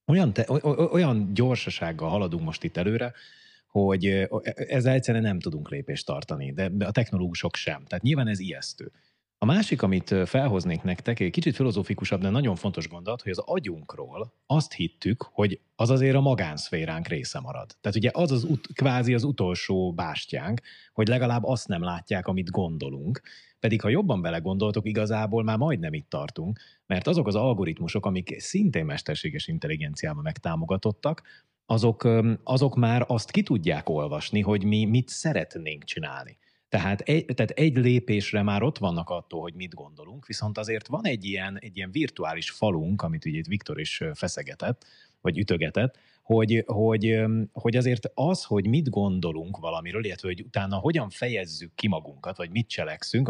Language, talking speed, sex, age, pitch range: Hungarian, 160 wpm, male, 30-49, 95-130 Hz